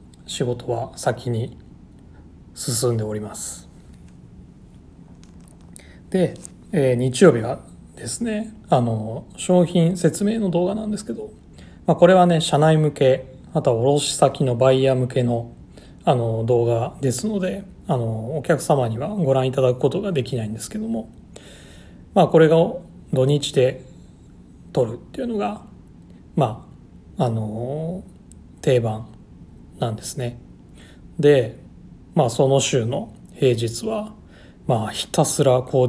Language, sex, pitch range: Japanese, male, 110-165 Hz